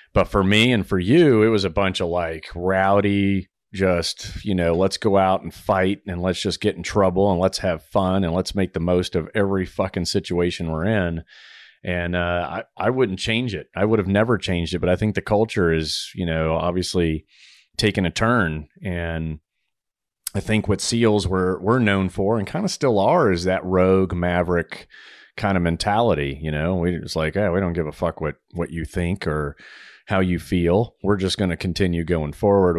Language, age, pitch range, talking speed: English, 40-59, 85-100 Hz, 210 wpm